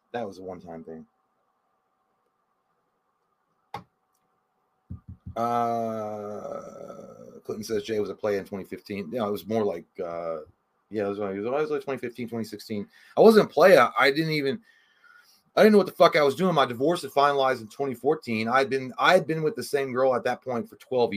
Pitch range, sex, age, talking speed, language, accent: 115-160 Hz, male, 30-49, 185 wpm, English, American